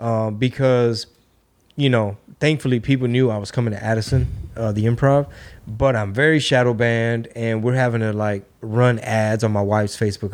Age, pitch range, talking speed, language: 20-39, 110-130 Hz, 180 wpm, English